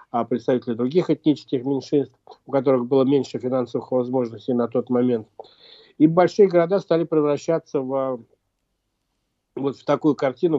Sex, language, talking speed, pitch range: male, Russian, 135 wpm, 130-150 Hz